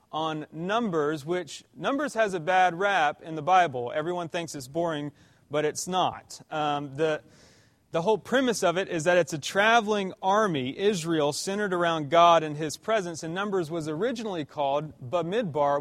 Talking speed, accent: 165 wpm, American